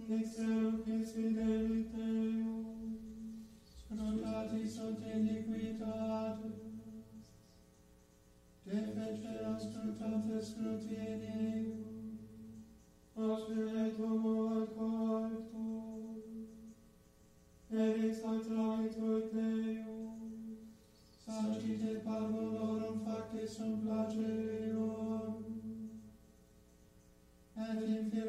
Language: English